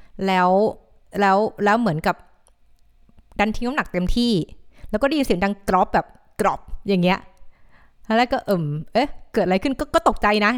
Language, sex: Thai, female